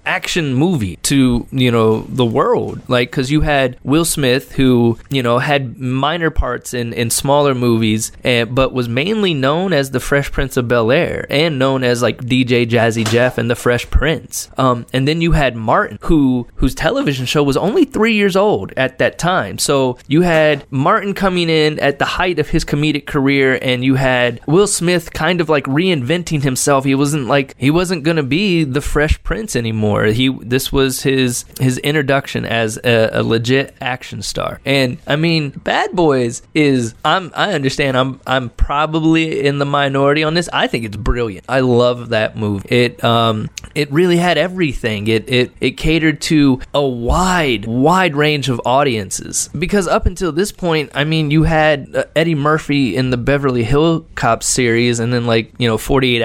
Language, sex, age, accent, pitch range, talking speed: English, male, 20-39, American, 120-155 Hz, 185 wpm